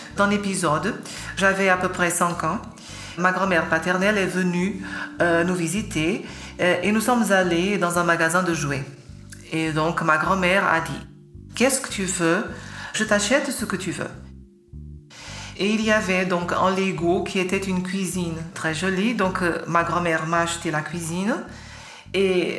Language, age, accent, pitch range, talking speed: French, 40-59, French, 165-195 Hz, 175 wpm